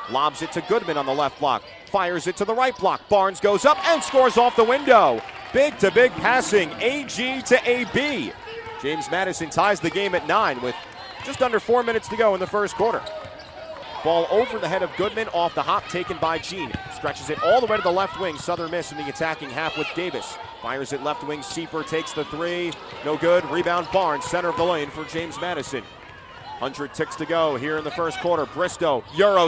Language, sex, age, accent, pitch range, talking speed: English, male, 30-49, American, 160-245 Hz, 215 wpm